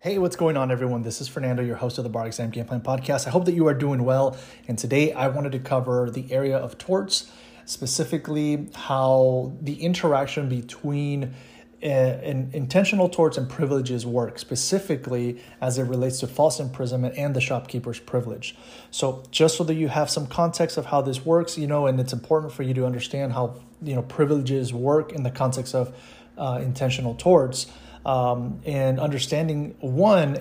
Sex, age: male, 30-49